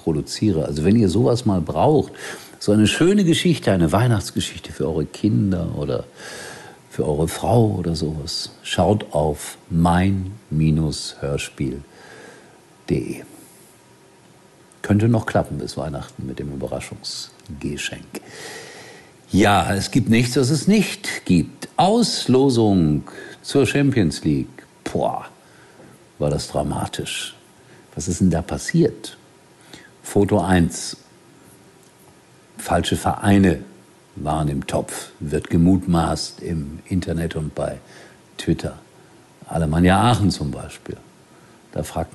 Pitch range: 75-100 Hz